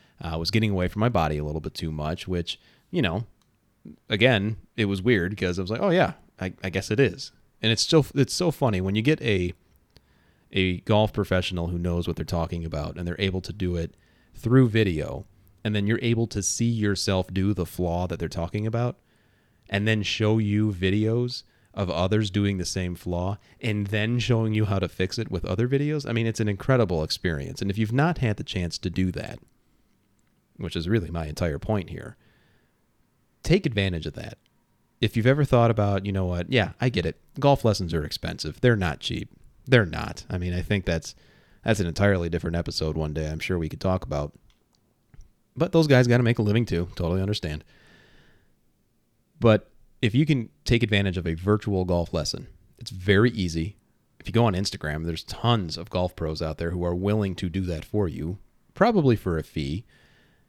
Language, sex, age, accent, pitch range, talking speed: English, male, 30-49, American, 85-115 Hz, 205 wpm